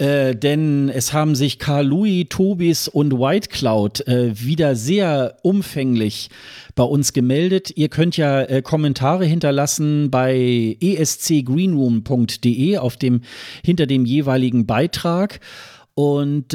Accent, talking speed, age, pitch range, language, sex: German, 110 wpm, 40-59, 130-160 Hz, German, male